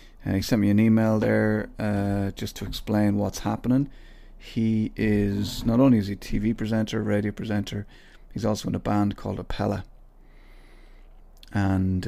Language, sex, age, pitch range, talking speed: English, male, 30-49, 95-110 Hz, 160 wpm